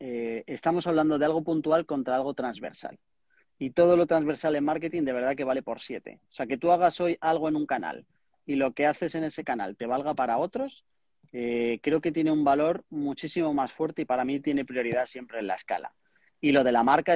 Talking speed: 225 wpm